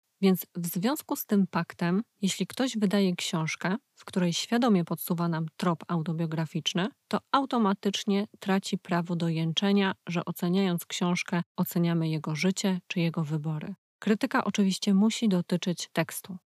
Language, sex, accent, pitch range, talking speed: Polish, female, native, 170-195 Hz, 135 wpm